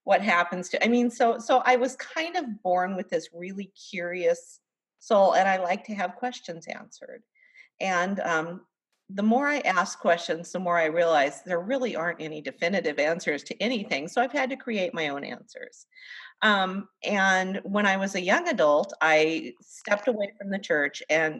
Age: 40-59